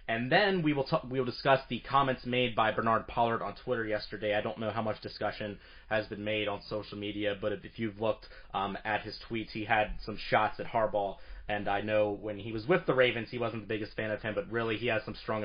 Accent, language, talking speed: American, English, 255 wpm